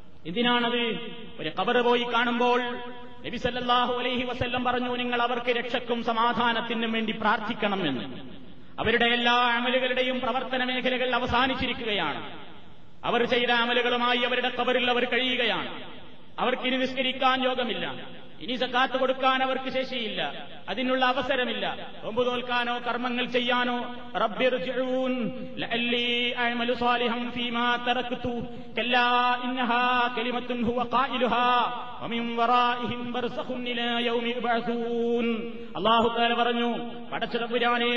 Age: 30-49